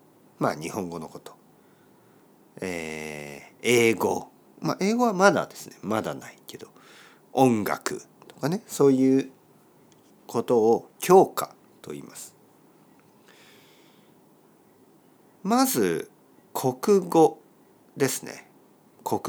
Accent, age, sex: native, 50-69, male